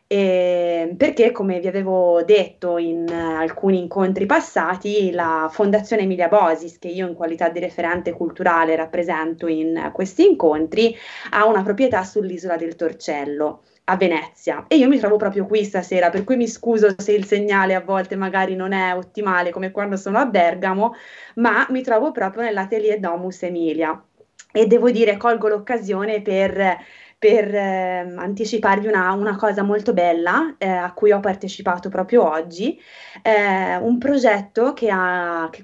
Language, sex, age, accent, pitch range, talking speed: Italian, female, 20-39, native, 180-225 Hz, 155 wpm